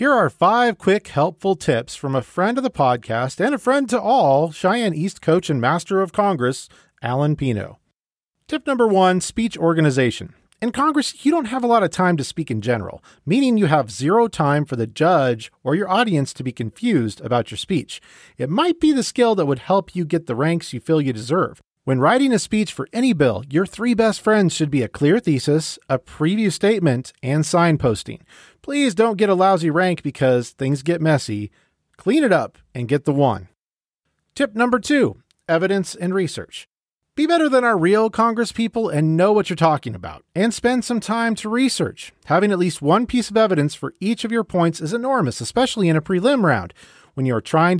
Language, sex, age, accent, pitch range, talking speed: English, male, 40-59, American, 135-220 Hz, 205 wpm